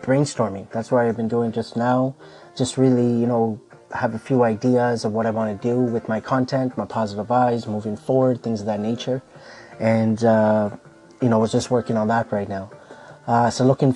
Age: 20-39